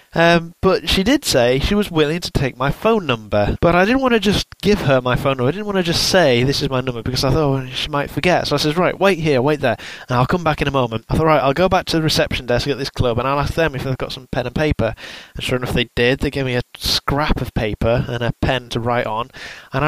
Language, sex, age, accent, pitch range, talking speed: English, male, 20-39, British, 125-160 Hz, 300 wpm